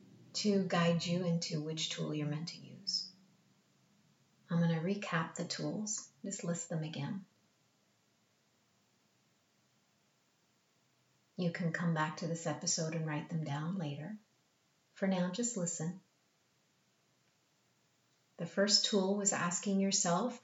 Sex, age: female, 30-49